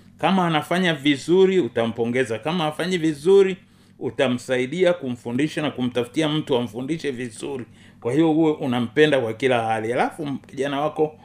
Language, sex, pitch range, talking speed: Swahili, male, 120-155 Hz, 130 wpm